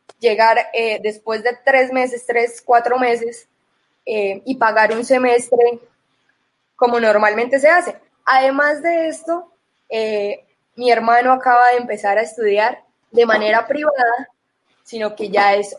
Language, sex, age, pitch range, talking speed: Spanish, female, 20-39, 220-260 Hz, 135 wpm